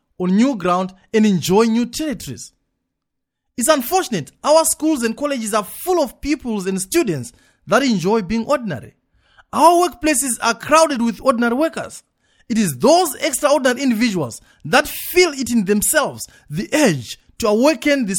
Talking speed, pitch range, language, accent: 150 wpm, 200-290 Hz, English, South African